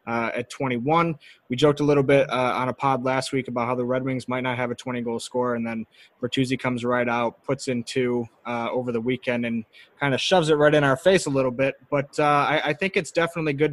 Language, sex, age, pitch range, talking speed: English, male, 20-39, 115-135 Hz, 255 wpm